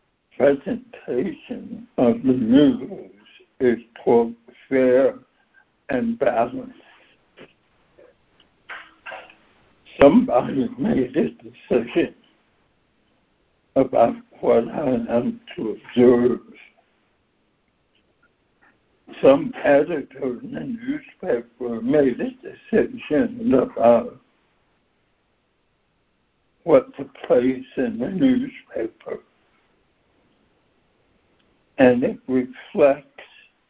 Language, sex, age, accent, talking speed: English, male, 60-79, American, 65 wpm